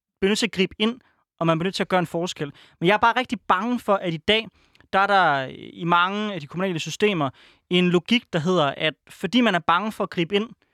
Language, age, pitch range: Danish, 20-39, 150-200 Hz